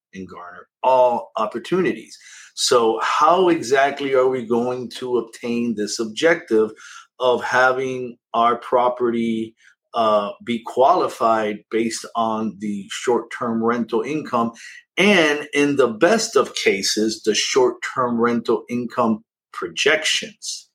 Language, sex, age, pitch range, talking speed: English, male, 50-69, 115-165 Hz, 110 wpm